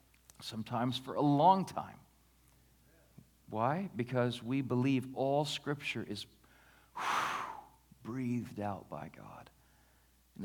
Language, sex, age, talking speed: English, male, 40-59, 100 wpm